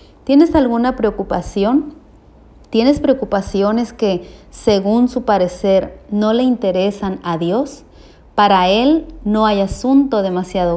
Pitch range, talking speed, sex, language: 185-240 Hz, 110 wpm, female, Spanish